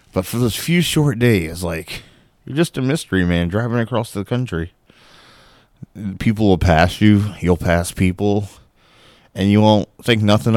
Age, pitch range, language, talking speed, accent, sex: 30-49, 85-105 Hz, English, 160 wpm, American, male